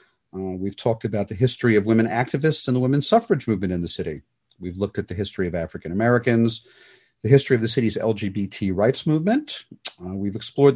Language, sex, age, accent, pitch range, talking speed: English, male, 40-59, American, 100-140 Hz, 200 wpm